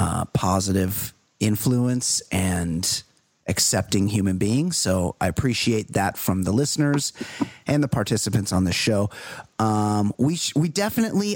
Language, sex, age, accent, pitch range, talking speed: English, male, 30-49, American, 105-145 Hz, 130 wpm